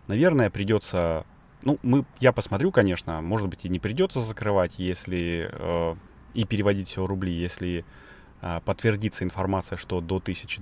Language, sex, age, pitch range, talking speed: Russian, male, 30-49, 90-115 Hz, 155 wpm